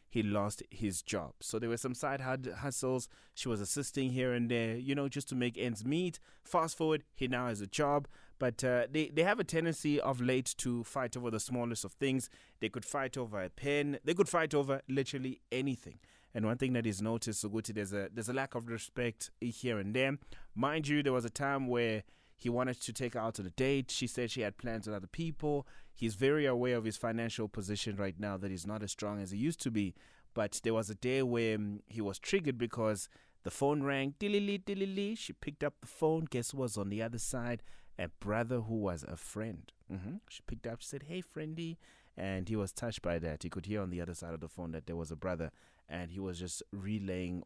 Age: 20-39